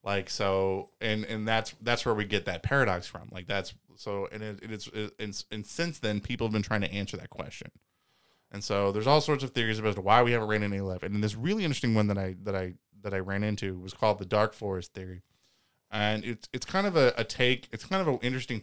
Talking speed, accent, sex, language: 245 wpm, American, male, English